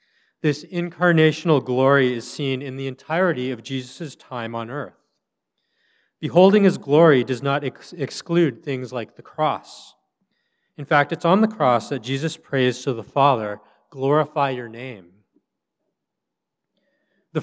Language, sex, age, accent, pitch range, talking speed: English, male, 40-59, American, 120-155 Hz, 140 wpm